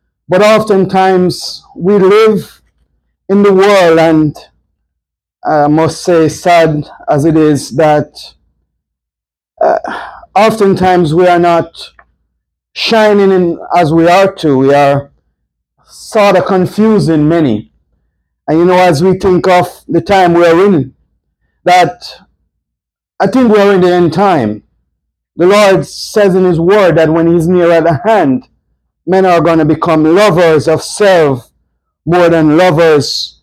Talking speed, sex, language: 140 wpm, male, English